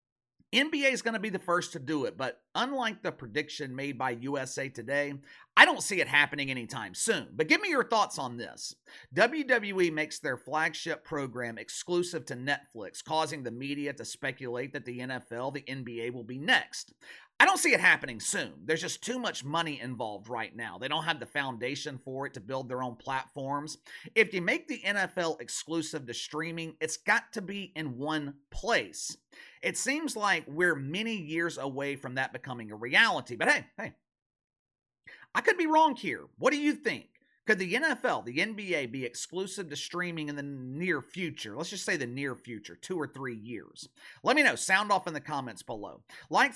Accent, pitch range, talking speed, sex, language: American, 130-175 Hz, 195 wpm, male, English